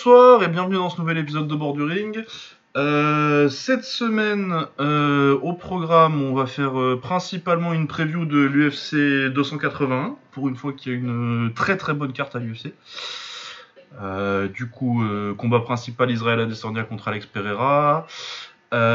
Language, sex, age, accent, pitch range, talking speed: French, male, 20-39, French, 110-145 Hz, 160 wpm